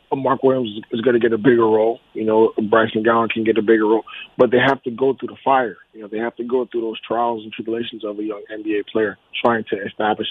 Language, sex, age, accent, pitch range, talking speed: English, male, 30-49, American, 110-135 Hz, 260 wpm